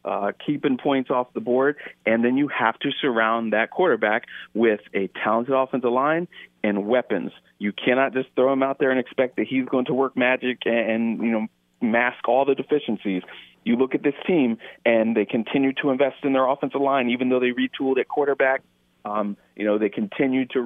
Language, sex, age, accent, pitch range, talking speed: English, male, 40-59, American, 115-135 Hz, 200 wpm